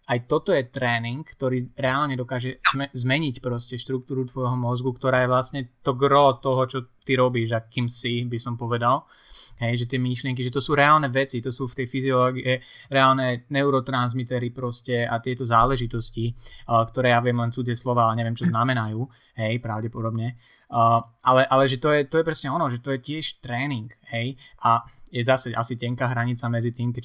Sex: male